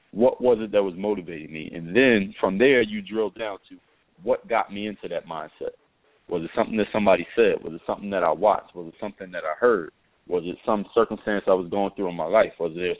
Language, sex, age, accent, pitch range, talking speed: English, male, 30-49, American, 95-130 Hz, 245 wpm